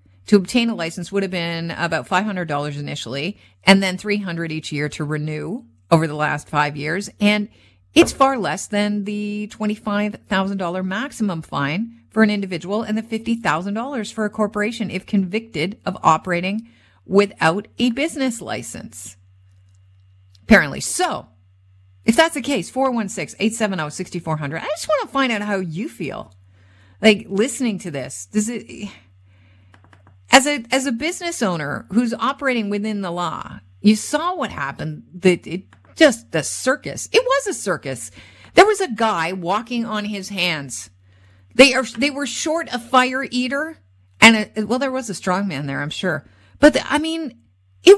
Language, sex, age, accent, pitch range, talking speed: English, female, 50-69, American, 150-225 Hz, 160 wpm